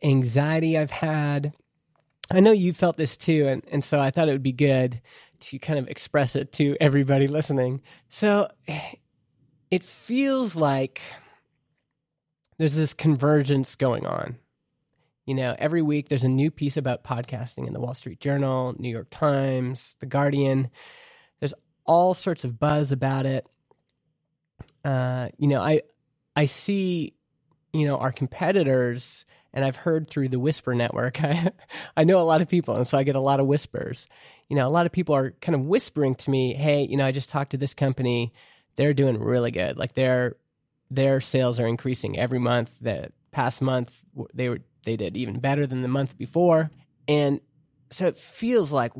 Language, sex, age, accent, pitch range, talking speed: English, male, 20-39, American, 130-155 Hz, 180 wpm